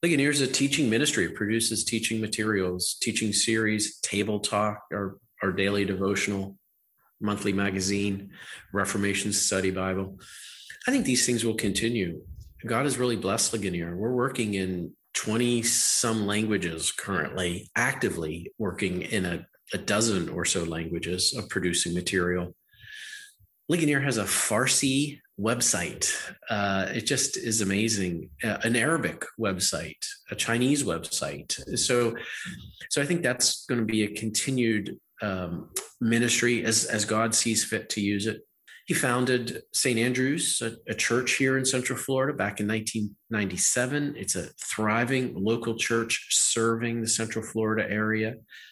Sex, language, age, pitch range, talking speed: male, English, 40-59, 100-120 Hz, 135 wpm